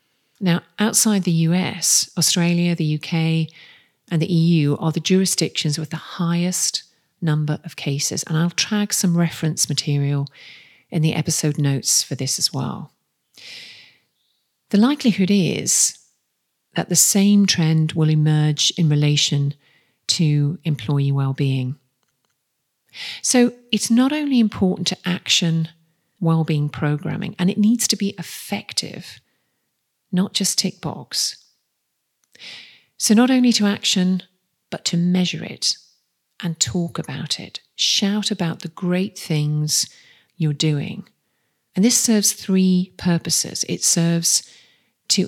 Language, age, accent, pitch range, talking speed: English, 40-59, British, 155-195 Hz, 125 wpm